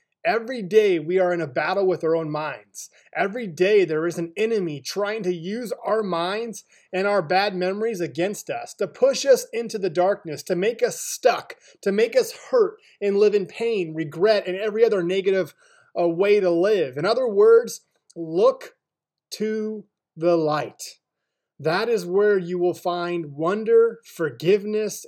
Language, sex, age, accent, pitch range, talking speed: English, male, 30-49, American, 175-235 Hz, 165 wpm